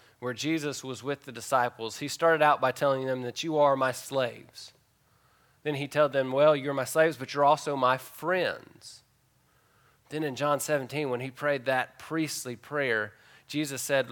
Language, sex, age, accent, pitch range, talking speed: English, male, 30-49, American, 120-140 Hz, 180 wpm